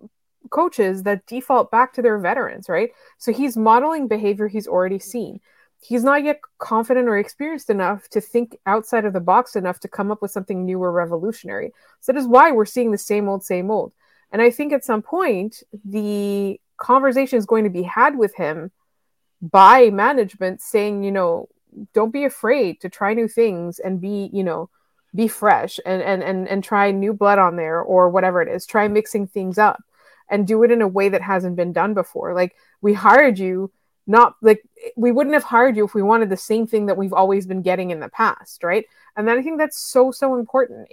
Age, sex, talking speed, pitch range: 30-49, female, 210 wpm, 195-240 Hz